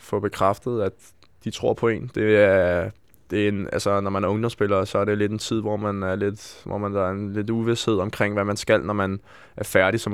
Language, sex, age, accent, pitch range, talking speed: Danish, male, 20-39, native, 95-110 Hz, 235 wpm